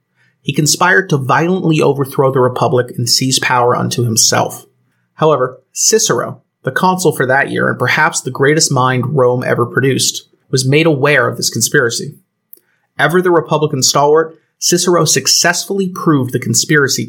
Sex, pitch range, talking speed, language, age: male, 125-160 Hz, 150 wpm, English, 30-49